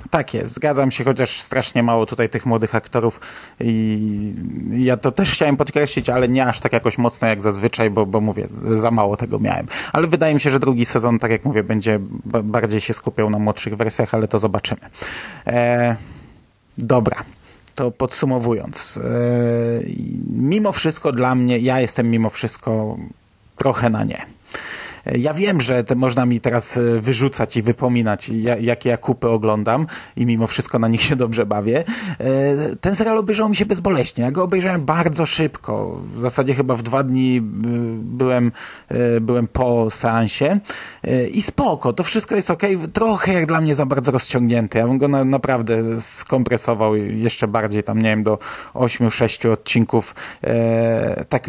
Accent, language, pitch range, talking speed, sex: native, Polish, 115-140 Hz, 160 wpm, male